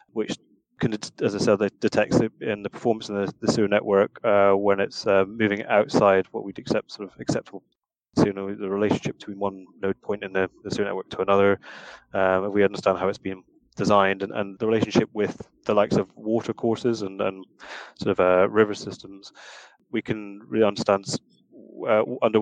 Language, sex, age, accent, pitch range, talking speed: English, male, 20-39, British, 95-110 Hz, 195 wpm